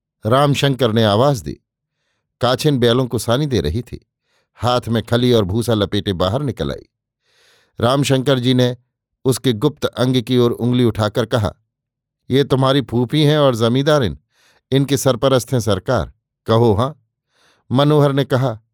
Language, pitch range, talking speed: Hindi, 115-140 Hz, 150 wpm